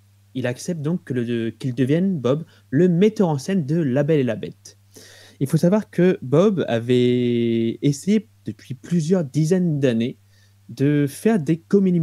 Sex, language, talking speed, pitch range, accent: male, French, 165 wpm, 105-155 Hz, French